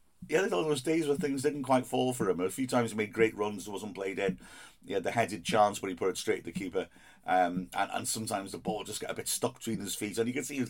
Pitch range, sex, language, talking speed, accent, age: 90-125 Hz, male, English, 315 wpm, British, 50-69